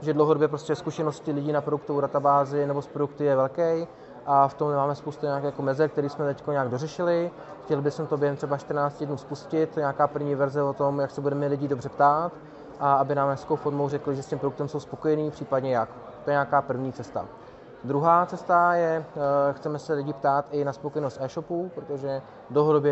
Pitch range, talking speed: 135-150 Hz, 200 wpm